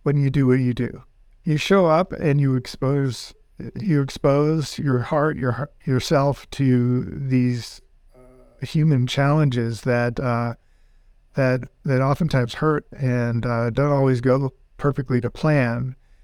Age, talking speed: 50-69, 135 wpm